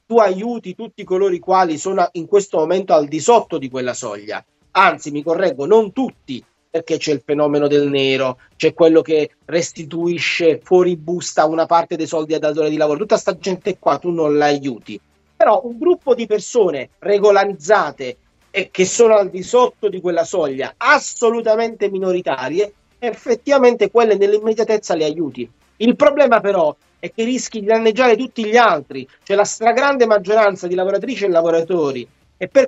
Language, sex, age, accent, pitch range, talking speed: Italian, male, 40-59, native, 165-225 Hz, 170 wpm